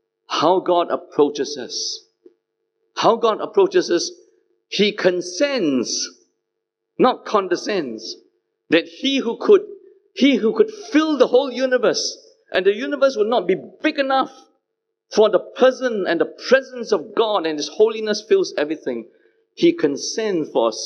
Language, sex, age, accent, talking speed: English, male, 50-69, Malaysian, 140 wpm